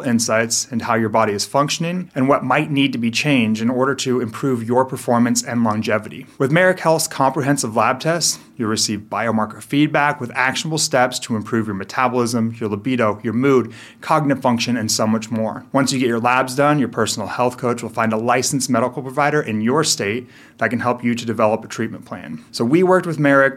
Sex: male